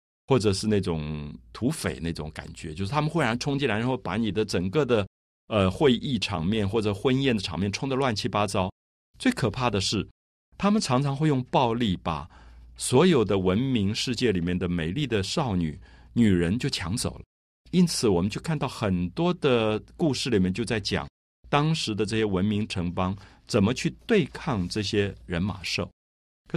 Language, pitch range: Chinese, 85-125 Hz